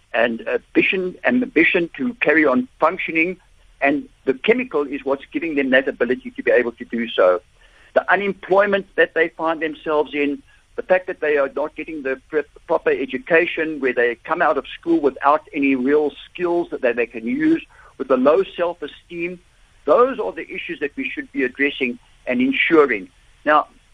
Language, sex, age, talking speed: English, male, 60-79, 175 wpm